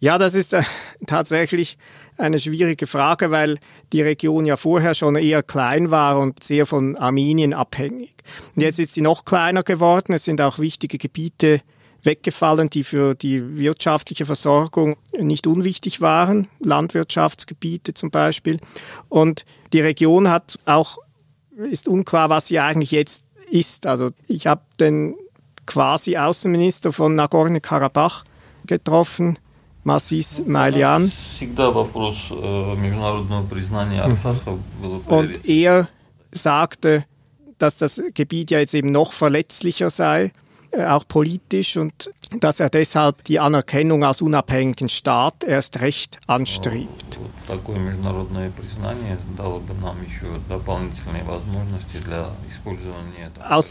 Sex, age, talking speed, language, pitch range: male, 40-59, 105 wpm, German, 125-165 Hz